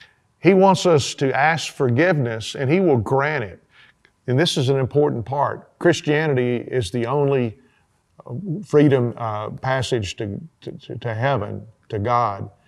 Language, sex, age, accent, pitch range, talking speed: English, male, 50-69, American, 125-170 Hz, 140 wpm